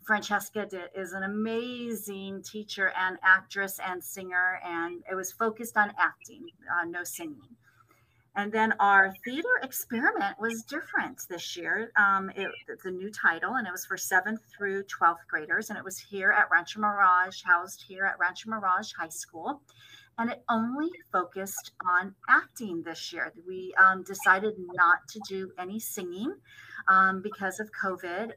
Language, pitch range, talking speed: English, 185-225 Hz, 155 wpm